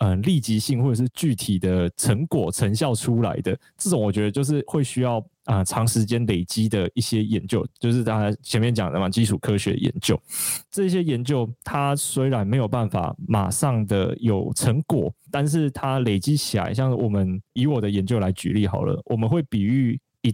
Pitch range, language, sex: 100-130 Hz, Chinese, male